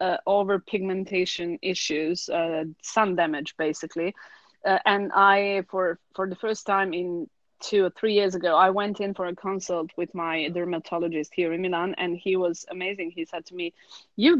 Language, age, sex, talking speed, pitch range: English, 30-49, female, 175 wpm, 175-210 Hz